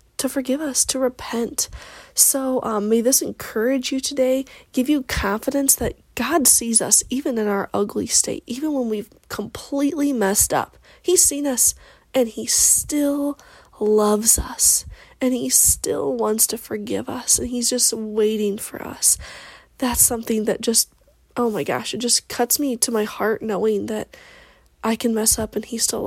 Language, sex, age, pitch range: English, female, 20-39, 210-260 Hz